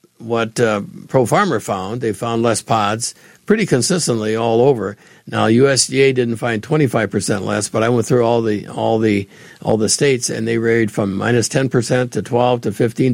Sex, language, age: male, English, 60-79